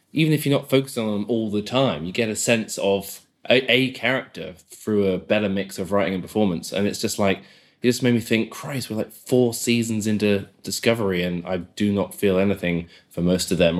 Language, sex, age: English, male, 20-39